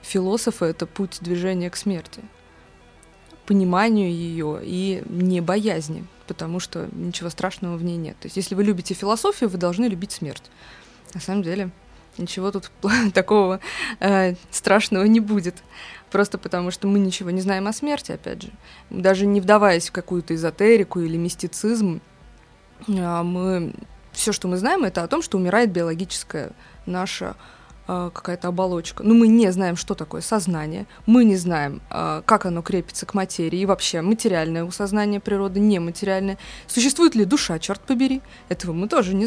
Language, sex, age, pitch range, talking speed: Russian, female, 20-39, 175-210 Hz, 155 wpm